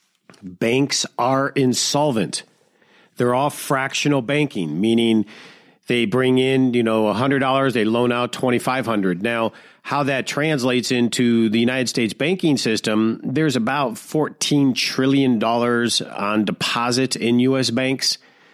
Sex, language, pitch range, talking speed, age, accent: male, English, 115-145 Hz, 120 wpm, 50-69, American